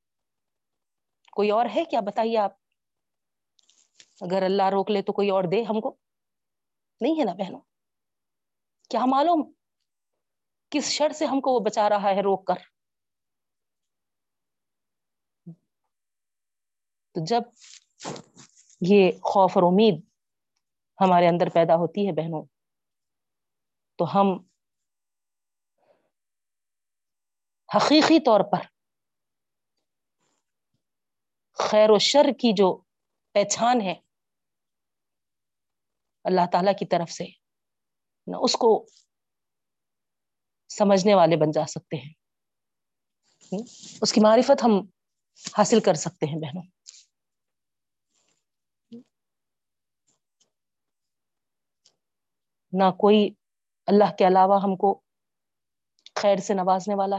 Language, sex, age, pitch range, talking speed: Urdu, female, 30-49, 170-215 Hz, 90 wpm